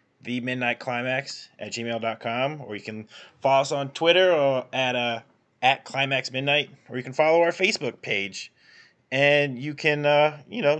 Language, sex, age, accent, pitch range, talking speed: English, male, 20-39, American, 115-140 Hz, 180 wpm